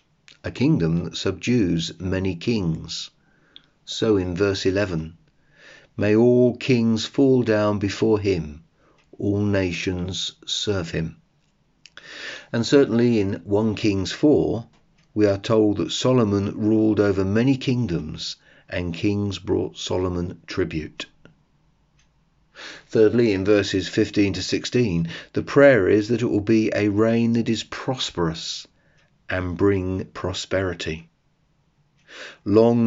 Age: 50-69